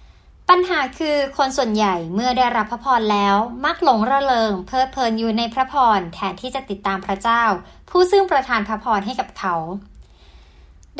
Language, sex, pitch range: Thai, male, 205-285 Hz